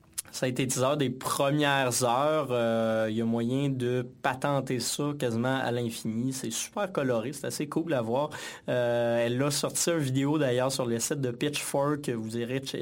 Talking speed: 190 wpm